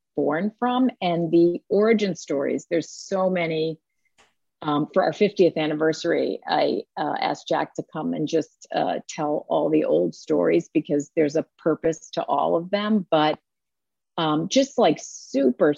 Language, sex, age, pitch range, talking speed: English, female, 40-59, 155-200 Hz, 155 wpm